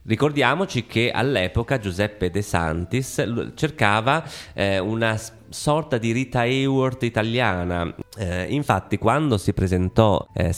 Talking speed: 115 wpm